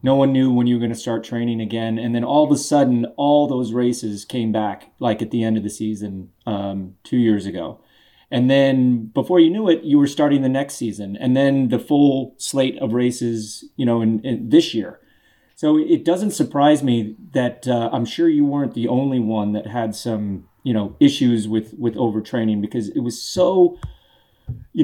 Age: 30-49